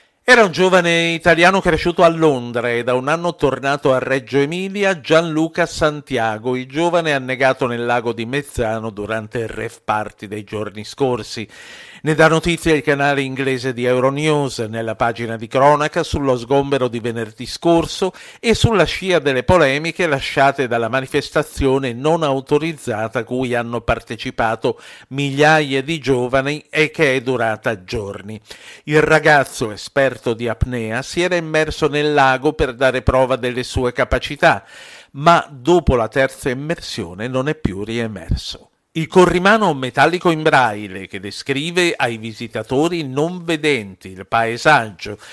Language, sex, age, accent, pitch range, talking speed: Italian, male, 50-69, native, 120-160 Hz, 145 wpm